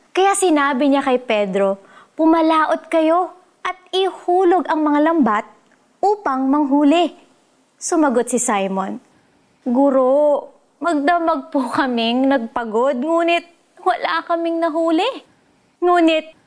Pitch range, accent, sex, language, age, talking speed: 240-315 Hz, native, female, Filipino, 20-39, 100 wpm